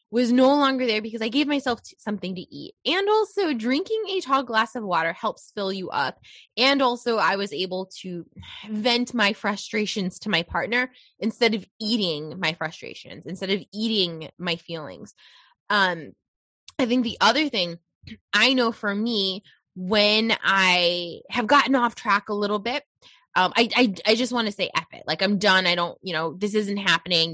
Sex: female